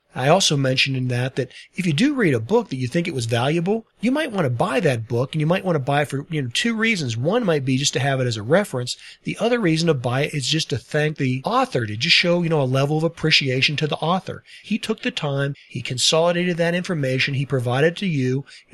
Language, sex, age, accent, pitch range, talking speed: English, male, 40-59, American, 135-170 Hz, 270 wpm